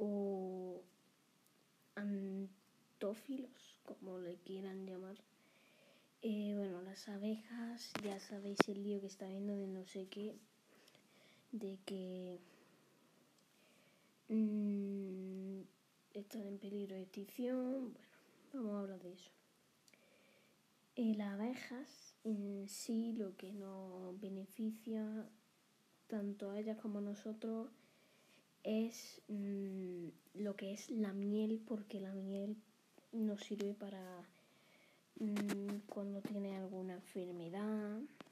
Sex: female